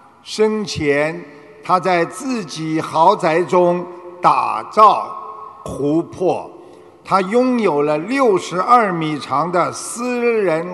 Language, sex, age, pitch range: Chinese, male, 50-69, 150-220 Hz